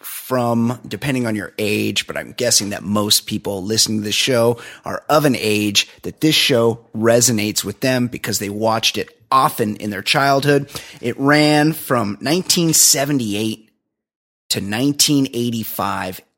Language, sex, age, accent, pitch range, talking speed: English, male, 30-49, American, 110-145 Hz, 145 wpm